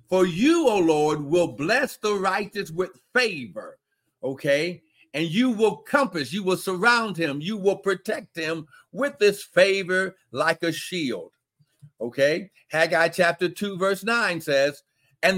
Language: English